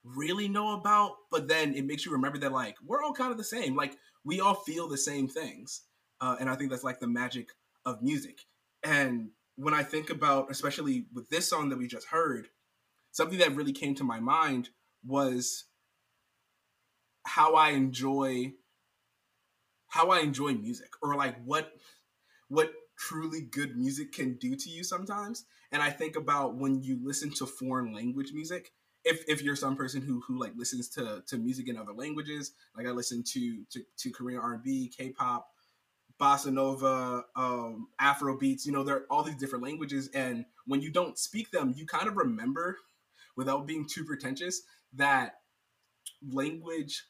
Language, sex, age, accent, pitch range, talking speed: English, male, 20-39, American, 130-185 Hz, 175 wpm